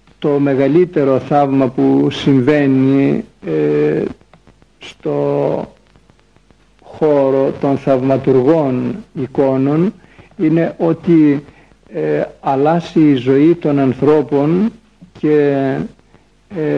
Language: Greek